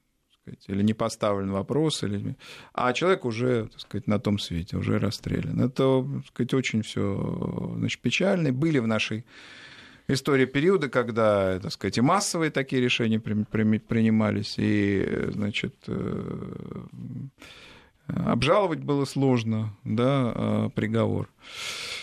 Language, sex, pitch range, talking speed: Russian, male, 105-135 Hz, 115 wpm